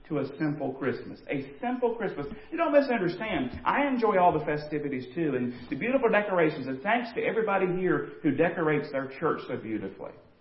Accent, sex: American, male